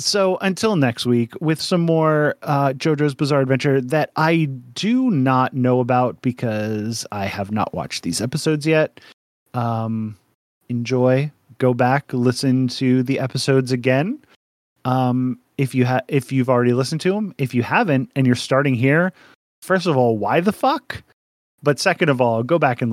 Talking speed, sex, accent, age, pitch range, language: 160 wpm, male, American, 30-49, 120-150 Hz, English